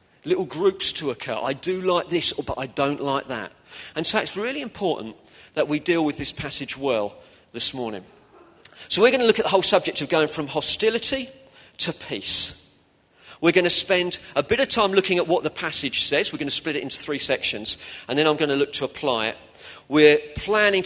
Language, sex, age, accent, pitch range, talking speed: English, male, 40-59, British, 125-165 Hz, 215 wpm